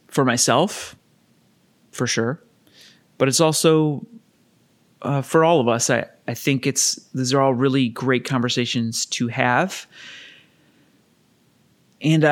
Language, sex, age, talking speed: English, male, 30-49, 120 wpm